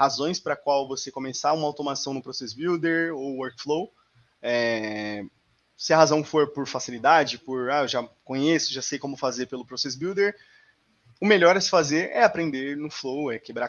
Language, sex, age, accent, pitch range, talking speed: Portuguese, male, 20-39, Brazilian, 130-170 Hz, 185 wpm